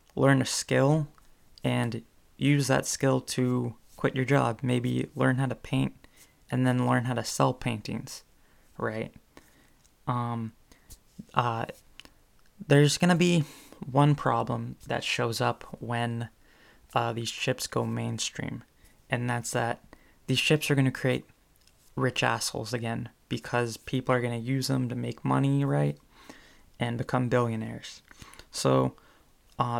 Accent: American